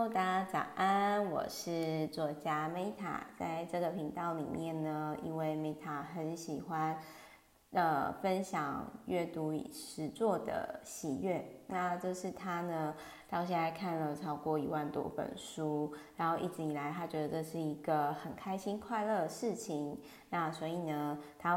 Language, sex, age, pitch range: Chinese, female, 20-39, 155-195 Hz